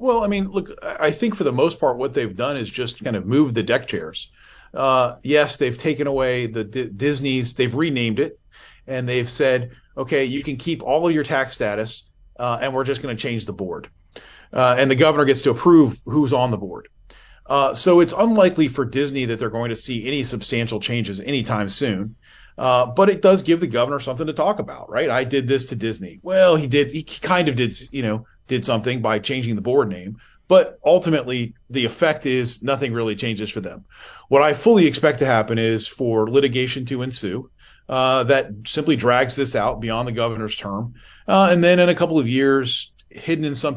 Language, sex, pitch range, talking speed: English, male, 115-150 Hz, 210 wpm